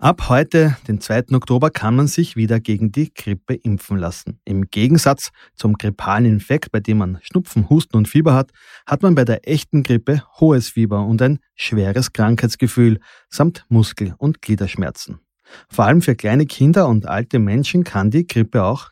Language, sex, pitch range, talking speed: German, male, 100-135 Hz, 175 wpm